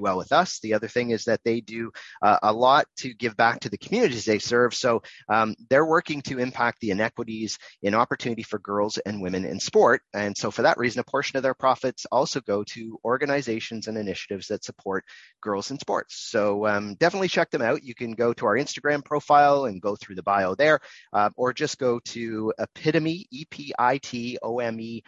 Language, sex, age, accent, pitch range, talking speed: English, male, 30-49, American, 110-145 Hz, 200 wpm